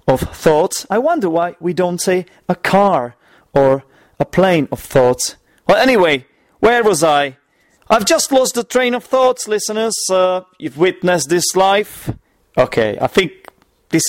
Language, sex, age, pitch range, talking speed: English, male, 30-49, 155-210 Hz, 160 wpm